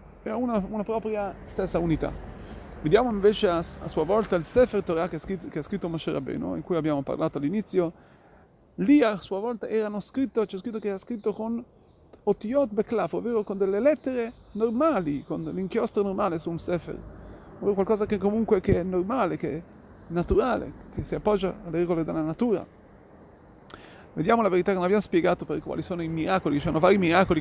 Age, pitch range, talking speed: 30-49, 165-220 Hz, 180 wpm